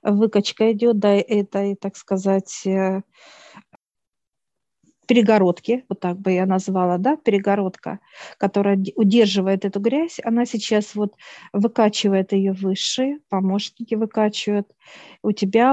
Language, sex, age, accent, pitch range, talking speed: Russian, female, 40-59, native, 195-225 Hz, 105 wpm